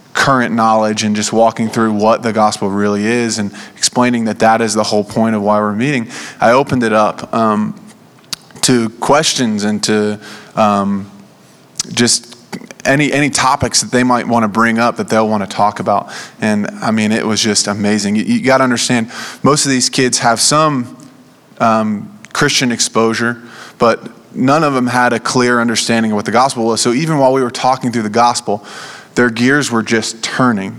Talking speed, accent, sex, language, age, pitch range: 190 wpm, American, male, English, 20-39, 110-130 Hz